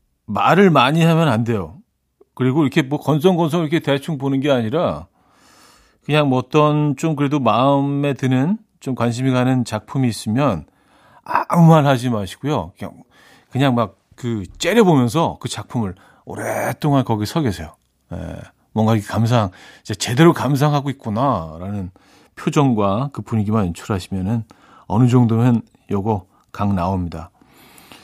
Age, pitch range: 40-59, 105-145 Hz